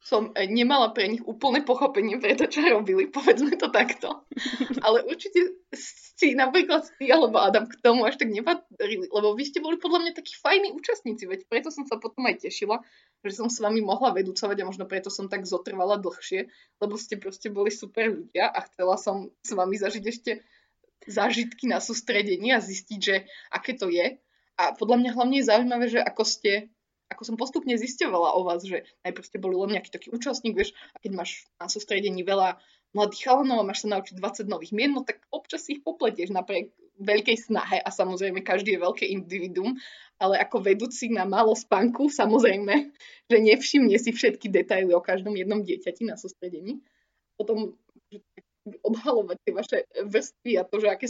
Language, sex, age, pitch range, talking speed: Slovak, female, 20-39, 200-260 Hz, 180 wpm